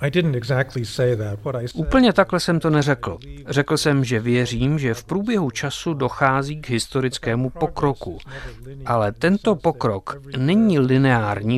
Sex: male